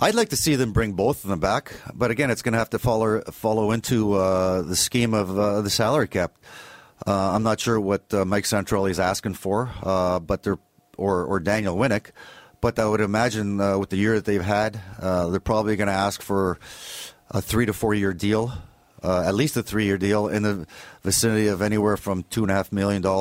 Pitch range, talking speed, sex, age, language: 95-110 Hz, 210 wpm, male, 40-59, English